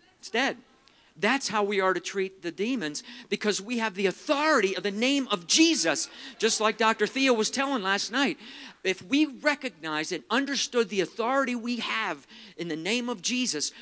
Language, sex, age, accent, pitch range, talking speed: English, male, 50-69, American, 150-235 Hz, 180 wpm